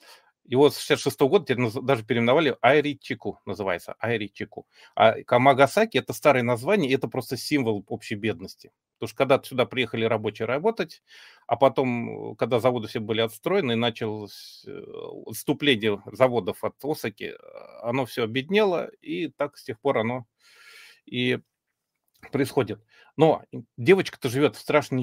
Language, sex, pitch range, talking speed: Russian, male, 115-140 Hz, 140 wpm